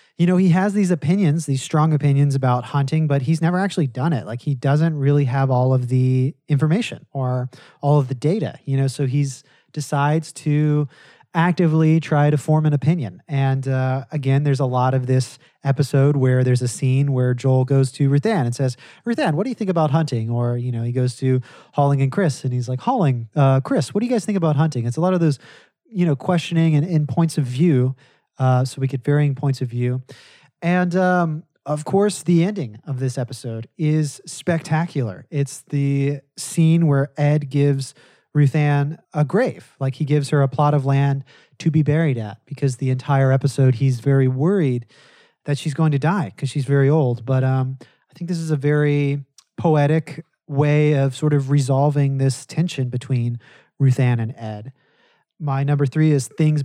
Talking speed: 195 wpm